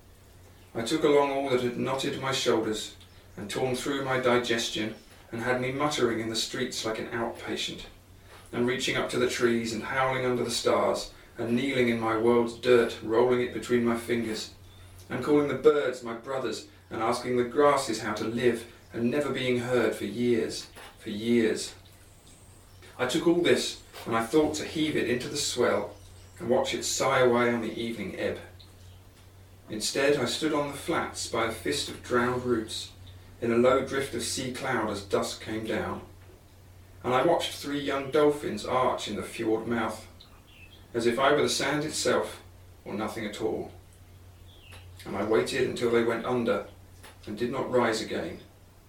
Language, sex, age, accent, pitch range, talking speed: English, male, 30-49, British, 95-125 Hz, 180 wpm